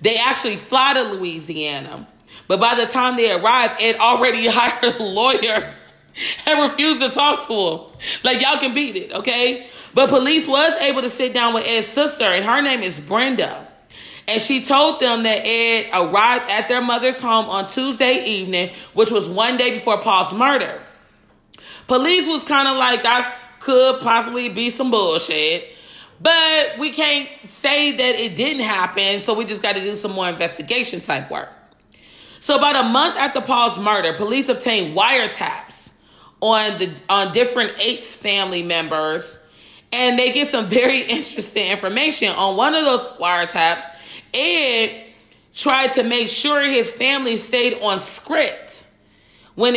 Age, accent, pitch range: 30-49, American, 210-270 Hz